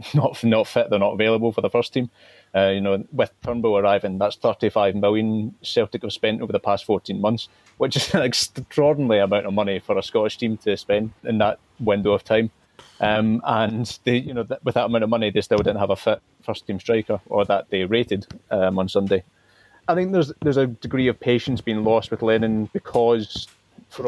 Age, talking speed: 30-49, 215 wpm